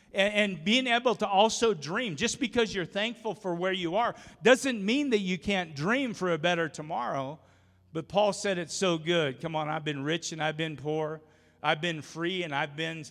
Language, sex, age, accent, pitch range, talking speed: English, male, 50-69, American, 125-170 Hz, 205 wpm